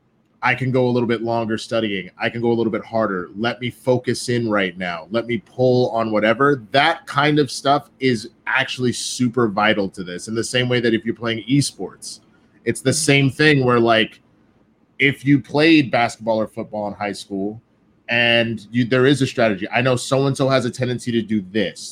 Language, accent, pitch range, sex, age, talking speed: English, American, 110-135 Hz, male, 30-49, 205 wpm